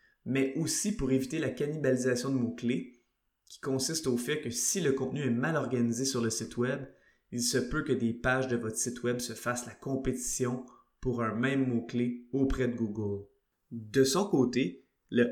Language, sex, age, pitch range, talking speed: French, male, 20-39, 115-135 Hz, 190 wpm